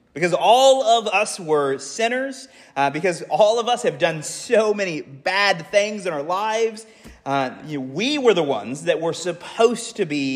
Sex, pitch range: male, 150-225 Hz